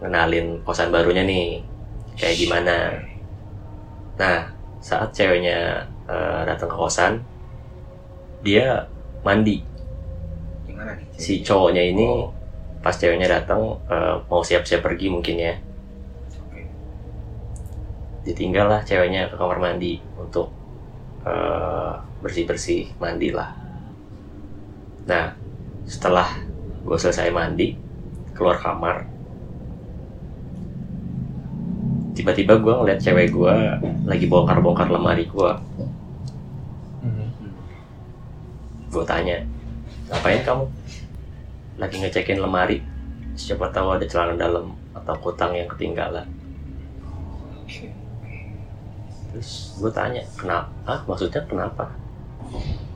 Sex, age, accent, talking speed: male, 20-39, native, 85 wpm